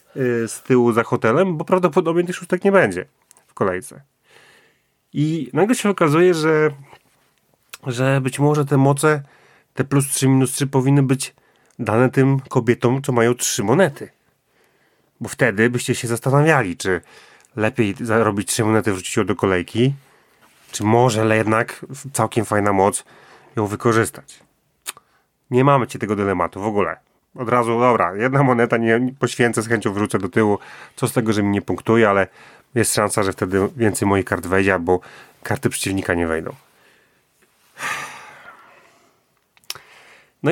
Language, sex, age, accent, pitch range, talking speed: Polish, male, 30-49, native, 110-170 Hz, 150 wpm